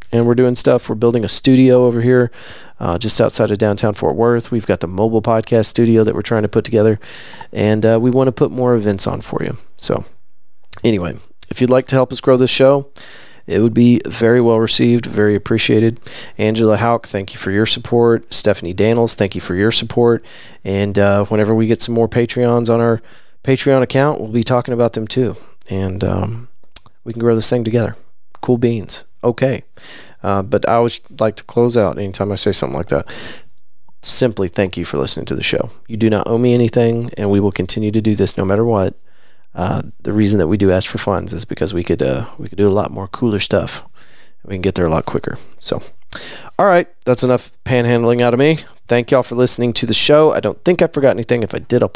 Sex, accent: male, American